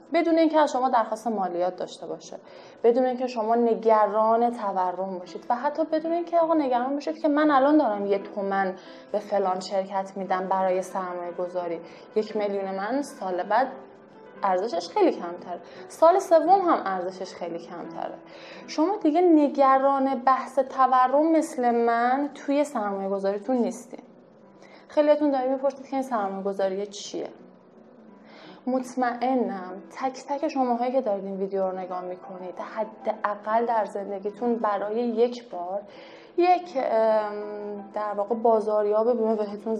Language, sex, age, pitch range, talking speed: Persian, female, 20-39, 200-265 Hz, 140 wpm